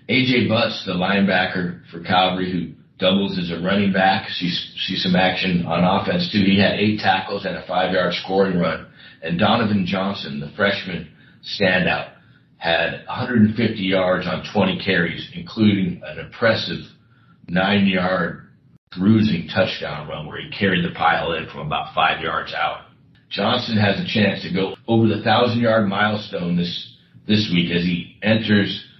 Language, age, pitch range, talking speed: English, 40-59, 90-105 Hz, 150 wpm